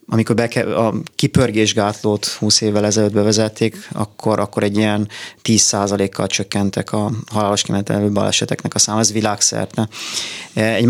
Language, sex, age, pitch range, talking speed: Hungarian, male, 30-49, 105-115 Hz, 130 wpm